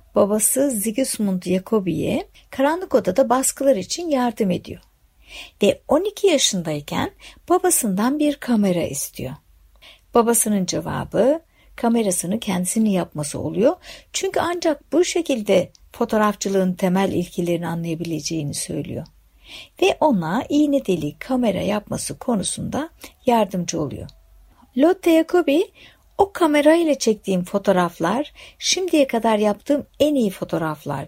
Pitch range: 180-285 Hz